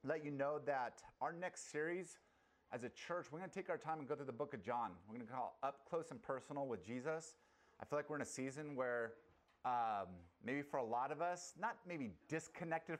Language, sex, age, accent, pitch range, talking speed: English, male, 30-49, American, 110-145 Hz, 235 wpm